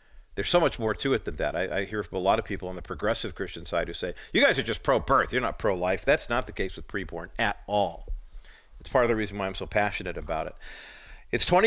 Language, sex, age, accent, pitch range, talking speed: English, male, 50-69, American, 95-120 Hz, 260 wpm